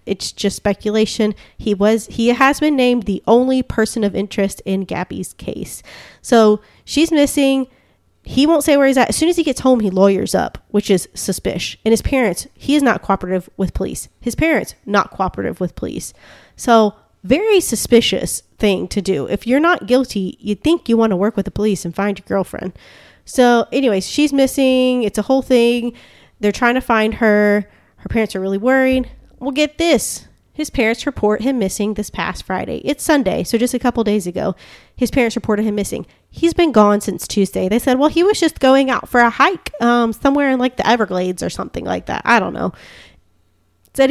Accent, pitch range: American, 200-270 Hz